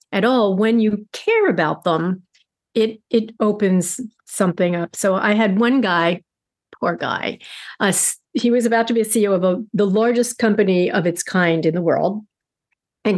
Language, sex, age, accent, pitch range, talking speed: English, female, 50-69, American, 185-240 Hz, 180 wpm